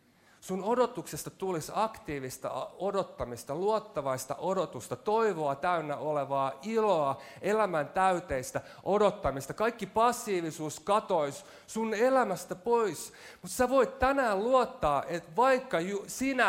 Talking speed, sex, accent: 100 wpm, male, native